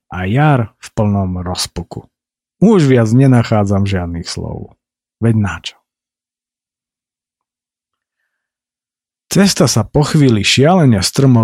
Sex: male